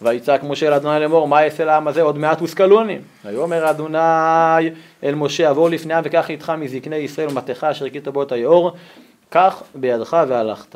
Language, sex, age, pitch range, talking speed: Hebrew, male, 30-49, 145-220 Hz, 175 wpm